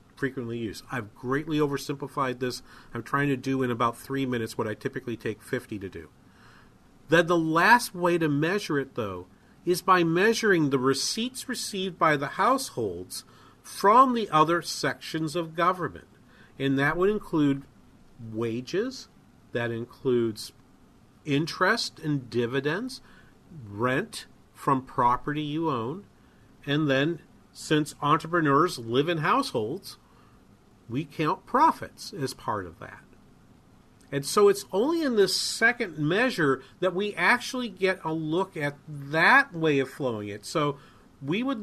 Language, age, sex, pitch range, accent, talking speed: English, 40-59, male, 125-175 Hz, American, 140 wpm